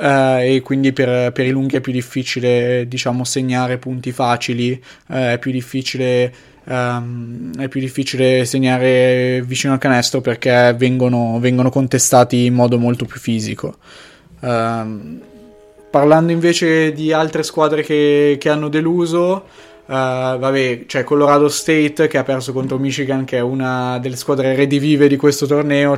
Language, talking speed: Italian, 145 wpm